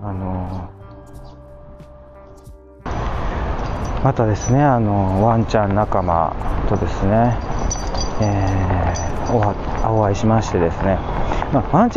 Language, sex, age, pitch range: Japanese, male, 40-59, 95-125 Hz